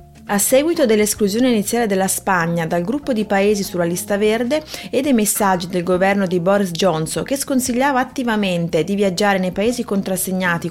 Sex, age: female, 30-49